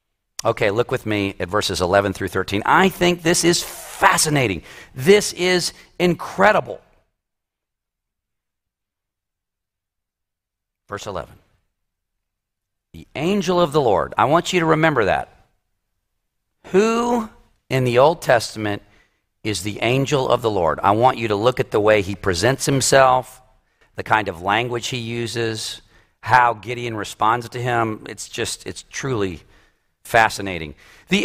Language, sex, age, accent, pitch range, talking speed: English, male, 50-69, American, 110-180 Hz, 135 wpm